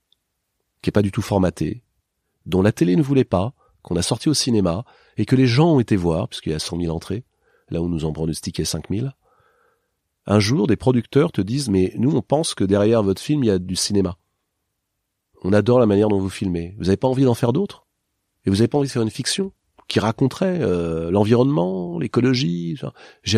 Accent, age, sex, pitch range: French, 40-59, male, 90-120 Hz